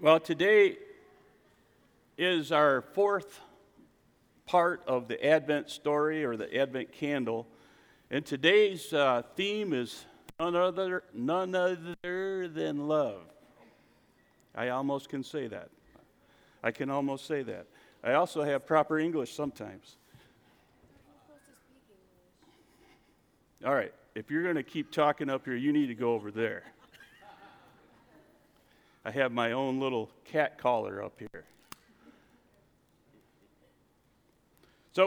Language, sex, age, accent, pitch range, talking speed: English, male, 50-69, American, 130-180 Hz, 115 wpm